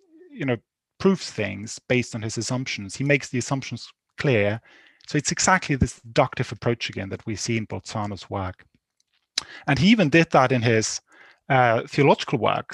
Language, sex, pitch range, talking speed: English, male, 115-150 Hz, 170 wpm